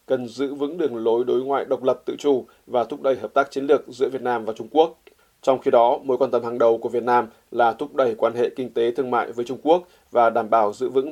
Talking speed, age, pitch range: 280 wpm, 20-39, 120-140 Hz